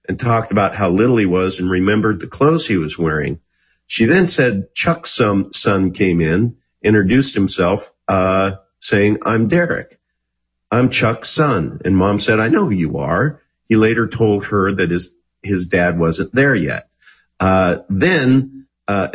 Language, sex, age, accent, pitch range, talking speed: English, male, 50-69, American, 95-120 Hz, 165 wpm